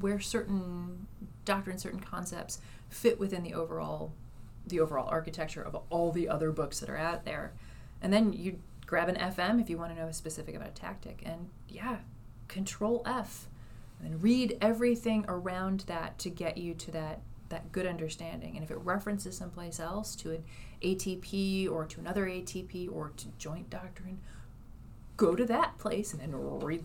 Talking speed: 175 wpm